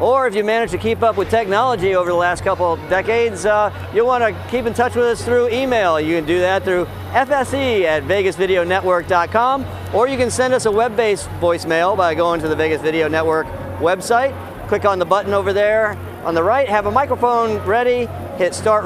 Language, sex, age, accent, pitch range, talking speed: English, male, 50-69, American, 175-220 Hz, 205 wpm